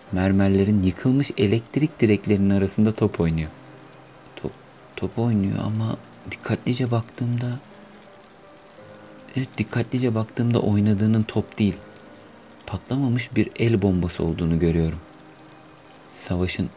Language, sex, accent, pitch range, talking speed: Turkish, male, native, 85-110 Hz, 95 wpm